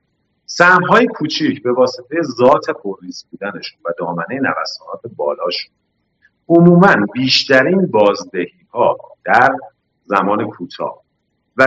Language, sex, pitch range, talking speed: Persian, male, 125-180 Hz, 100 wpm